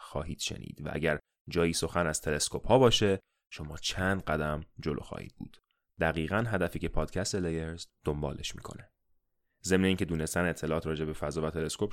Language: Persian